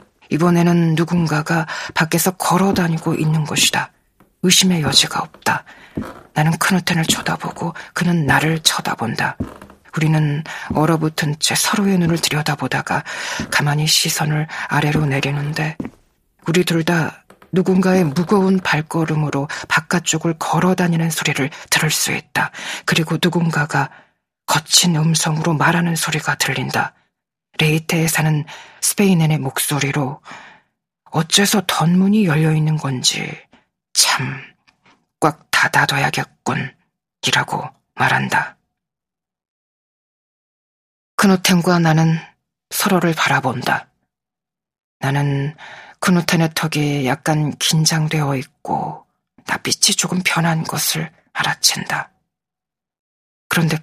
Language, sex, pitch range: Korean, female, 150-175 Hz